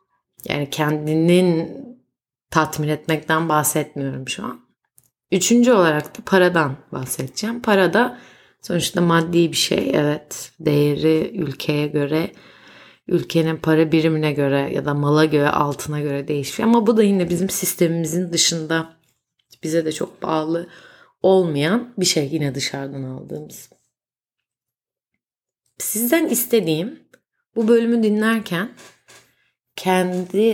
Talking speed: 110 wpm